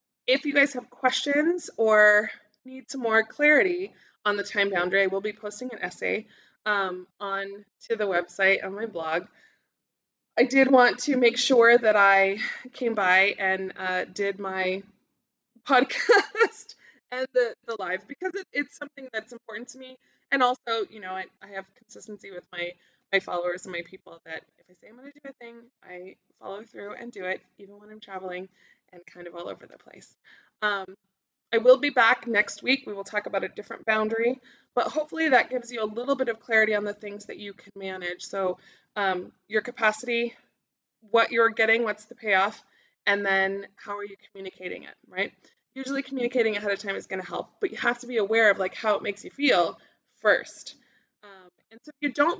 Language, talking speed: English, 200 wpm